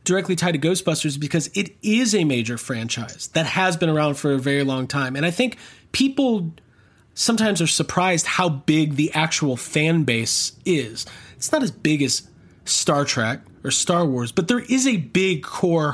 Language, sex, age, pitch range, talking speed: English, male, 30-49, 130-185 Hz, 185 wpm